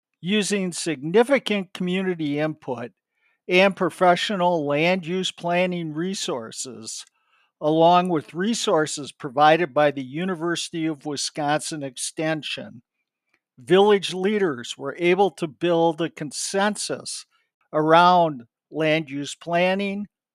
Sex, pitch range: male, 150-195 Hz